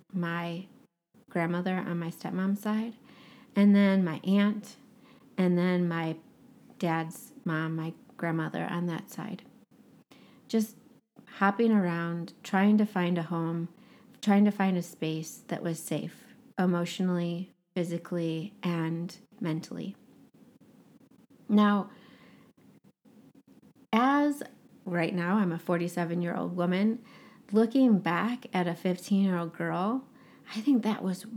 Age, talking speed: 30-49, 115 wpm